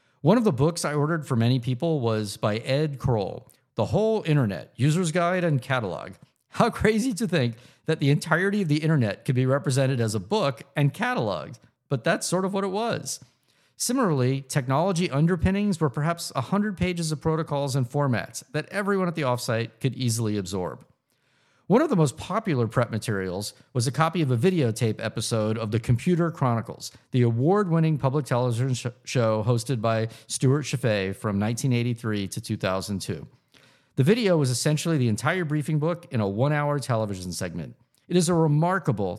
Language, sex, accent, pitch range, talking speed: English, male, American, 115-160 Hz, 170 wpm